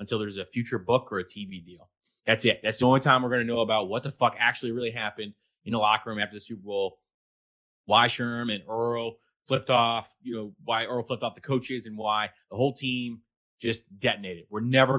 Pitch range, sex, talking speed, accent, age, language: 105-120 Hz, male, 230 wpm, American, 30-49, English